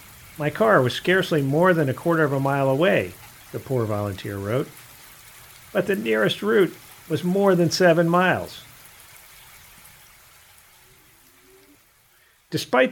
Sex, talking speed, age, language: male, 120 wpm, 50-69, English